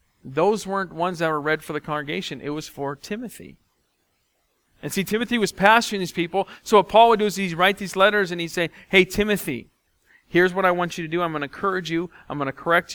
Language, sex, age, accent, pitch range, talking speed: English, male, 40-59, American, 150-200 Hz, 235 wpm